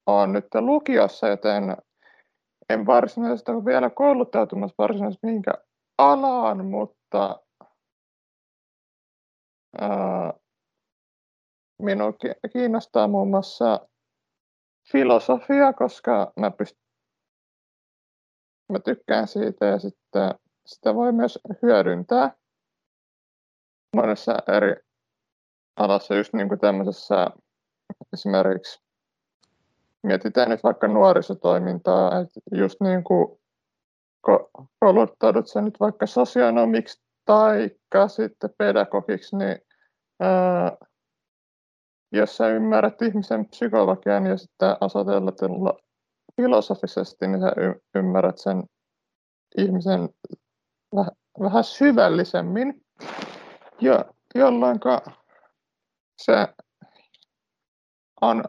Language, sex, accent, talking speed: Finnish, male, native, 75 wpm